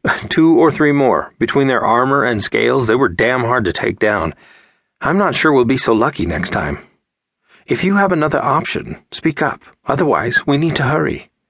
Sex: male